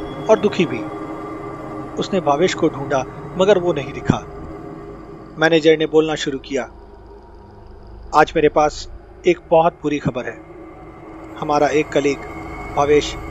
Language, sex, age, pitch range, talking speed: Hindi, male, 40-59, 125-175 Hz, 125 wpm